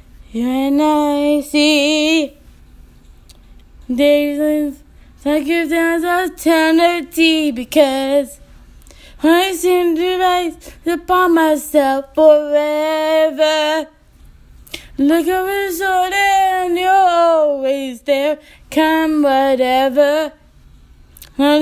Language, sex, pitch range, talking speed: English, female, 260-325 Hz, 80 wpm